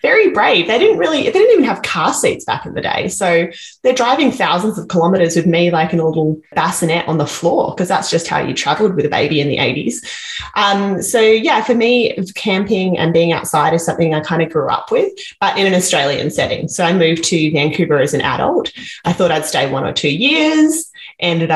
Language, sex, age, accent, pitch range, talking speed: English, female, 20-39, Australian, 160-215 Hz, 230 wpm